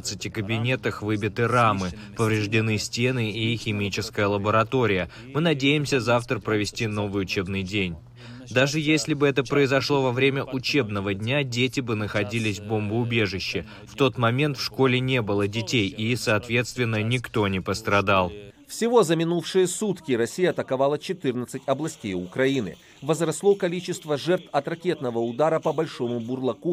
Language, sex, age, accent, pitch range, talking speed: Russian, male, 20-39, native, 110-155 Hz, 140 wpm